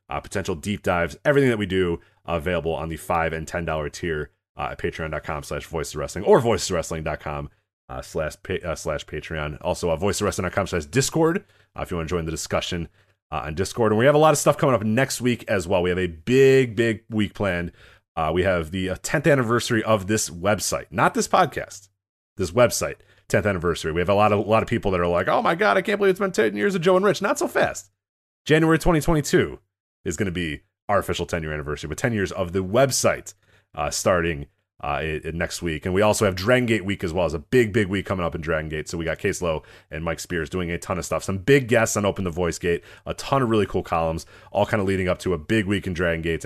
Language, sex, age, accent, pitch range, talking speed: English, male, 30-49, American, 80-110 Hz, 245 wpm